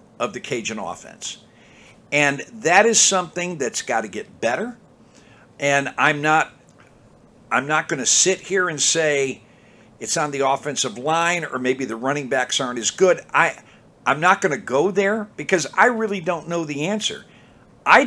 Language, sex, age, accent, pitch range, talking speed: English, male, 50-69, American, 140-190 Hz, 175 wpm